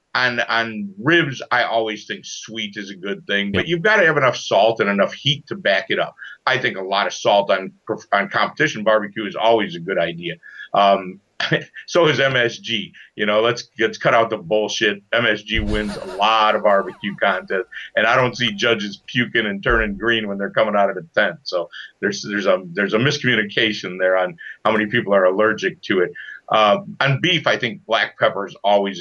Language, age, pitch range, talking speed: English, 50-69, 100-125 Hz, 205 wpm